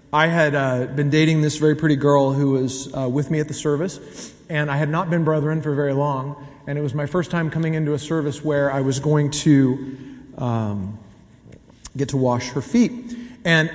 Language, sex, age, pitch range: English, male, 40-59, 135-165 Hz